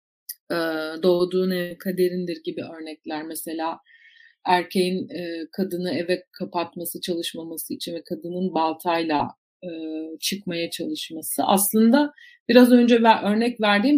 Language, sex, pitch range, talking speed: Turkish, female, 180-240 Hz, 95 wpm